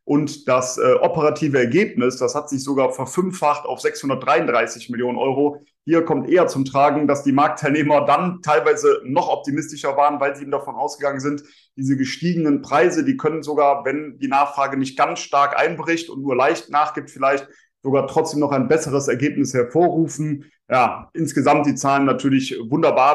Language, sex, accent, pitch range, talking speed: German, male, German, 140-155 Hz, 165 wpm